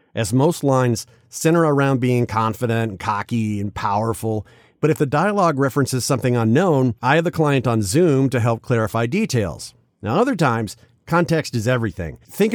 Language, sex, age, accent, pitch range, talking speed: English, male, 50-69, American, 115-145 Hz, 165 wpm